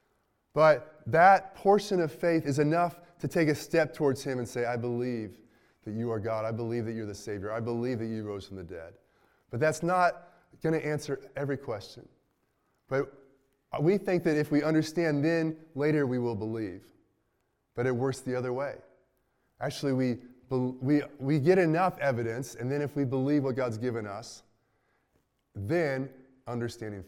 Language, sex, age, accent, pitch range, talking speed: English, male, 20-39, American, 95-140 Hz, 175 wpm